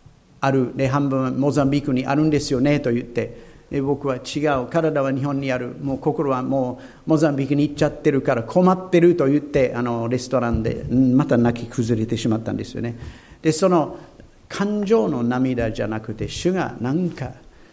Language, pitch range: Japanese, 120-155 Hz